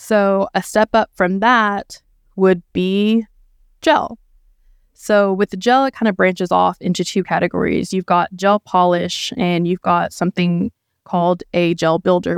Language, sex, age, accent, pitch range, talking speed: English, female, 20-39, American, 175-205 Hz, 160 wpm